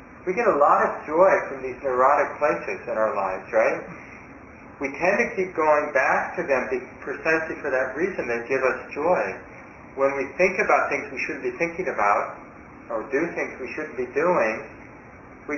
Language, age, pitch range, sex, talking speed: English, 40-59, 120-145 Hz, male, 185 wpm